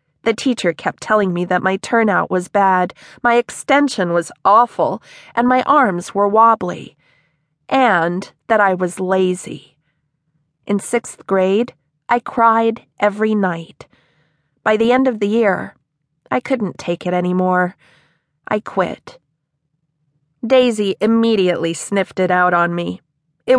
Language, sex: English, female